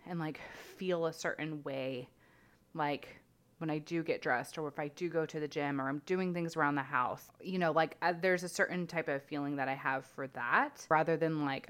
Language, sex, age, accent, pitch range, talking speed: English, female, 20-39, American, 145-180 Hz, 230 wpm